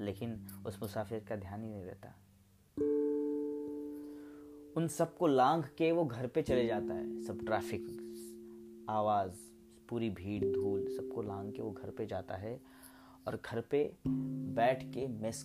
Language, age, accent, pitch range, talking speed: Hindi, 30-49, native, 110-145 Hz, 155 wpm